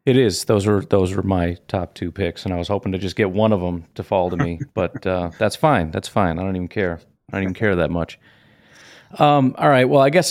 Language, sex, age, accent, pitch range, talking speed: English, male, 40-59, American, 100-120 Hz, 270 wpm